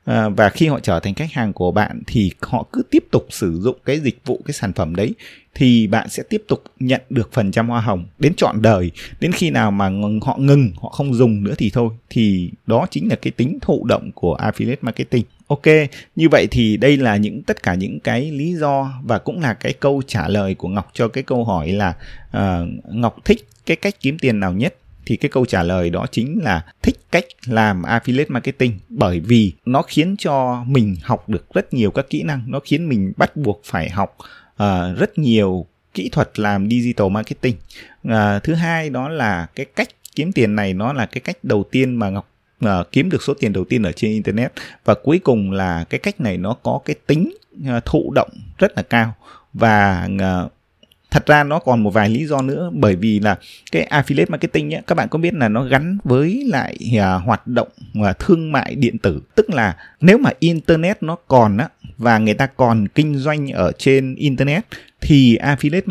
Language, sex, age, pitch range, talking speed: Vietnamese, male, 20-39, 105-145 Hz, 210 wpm